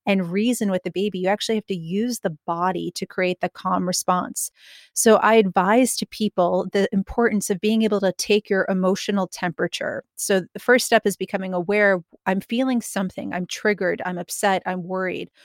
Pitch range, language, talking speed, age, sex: 185-220 Hz, English, 185 wpm, 30-49, female